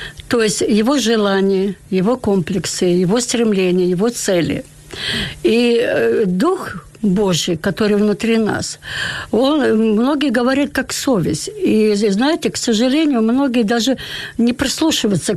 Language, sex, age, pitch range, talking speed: Ukrainian, female, 60-79, 200-260 Hz, 115 wpm